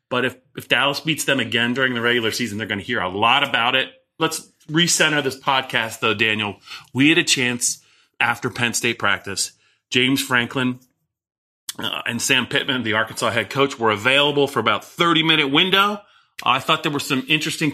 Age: 30-49